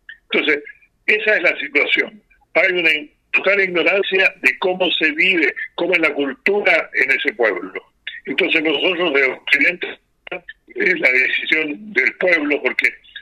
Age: 60-79